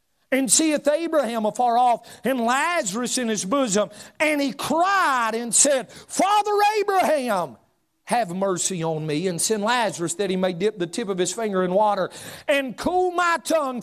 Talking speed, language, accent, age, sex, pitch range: 170 wpm, English, American, 40-59, male, 155-245 Hz